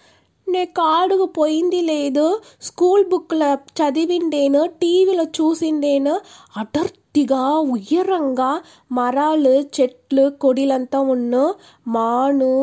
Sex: female